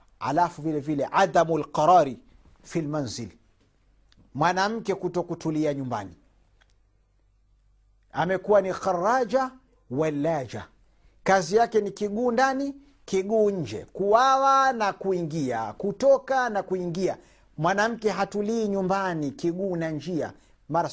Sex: male